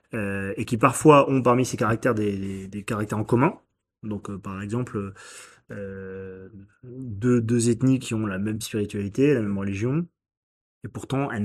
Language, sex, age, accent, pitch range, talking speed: French, male, 30-49, French, 105-130 Hz, 175 wpm